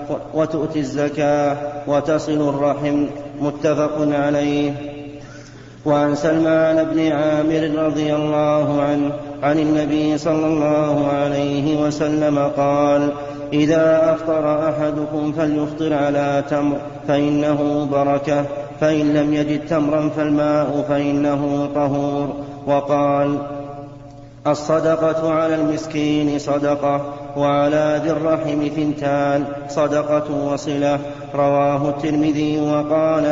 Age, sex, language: 30-49, male, Arabic